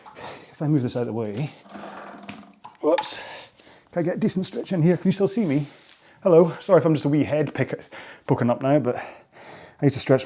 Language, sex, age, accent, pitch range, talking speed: English, male, 30-49, British, 120-145 Hz, 220 wpm